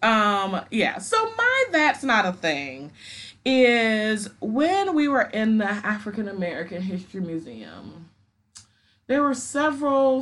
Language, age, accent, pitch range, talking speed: English, 30-49, American, 165-225 Hz, 125 wpm